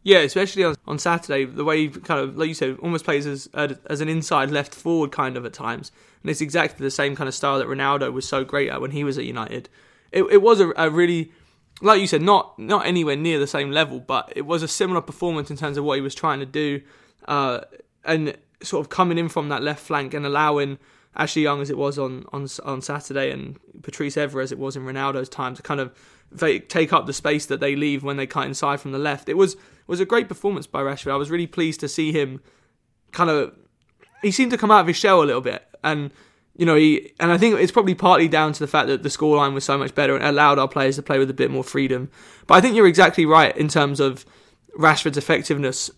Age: 20-39